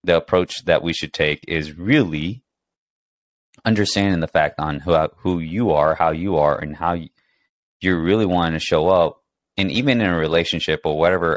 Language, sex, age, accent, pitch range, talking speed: English, male, 20-39, American, 80-100 Hz, 185 wpm